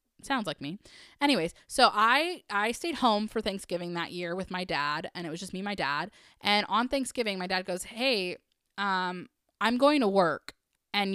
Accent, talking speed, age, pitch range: American, 200 wpm, 20-39, 195-300 Hz